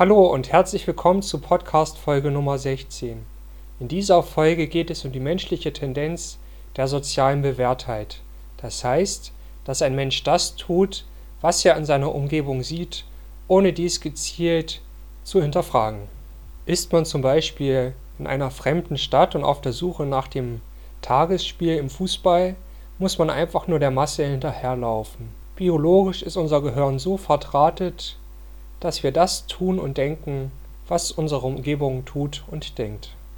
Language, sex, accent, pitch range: German, male, German, 130-165 Hz